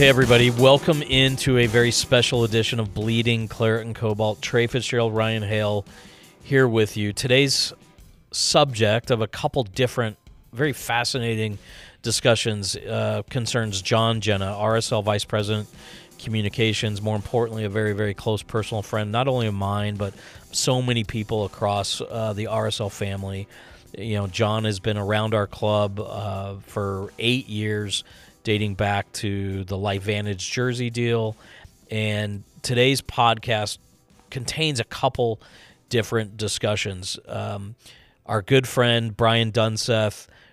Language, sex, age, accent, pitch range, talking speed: English, male, 40-59, American, 105-120 Hz, 135 wpm